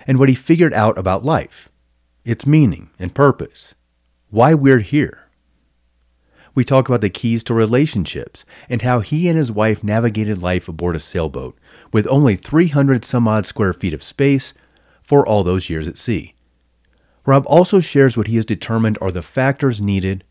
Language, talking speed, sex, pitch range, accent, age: English, 170 wpm, male, 85-130 Hz, American, 40-59